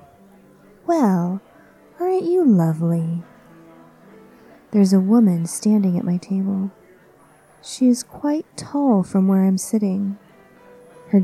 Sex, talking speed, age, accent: female, 105 wpm, 30-49, American